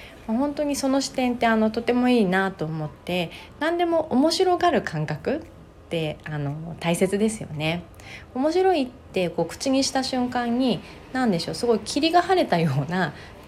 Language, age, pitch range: Japanese, 30-49, 160-250 Hz